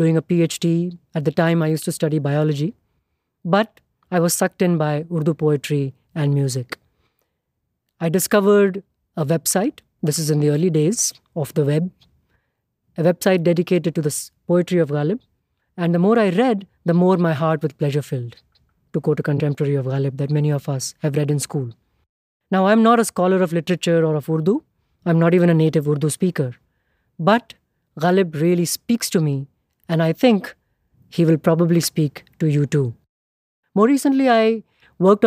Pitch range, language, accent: 150-190 Hz, English, Indian